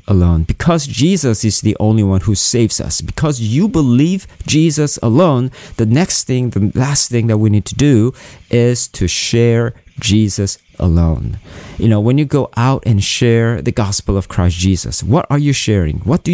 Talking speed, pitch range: 185 wpm, 100-135 Hz